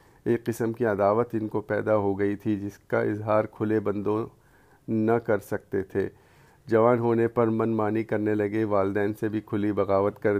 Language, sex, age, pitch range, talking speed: English, male, 50-69, 105-115 Hz, 165 wpm